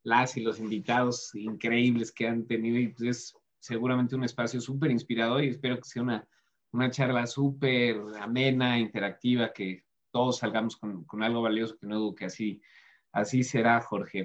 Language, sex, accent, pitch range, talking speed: Spanish, male, Mexican, 115-135 Hz, 170 wpm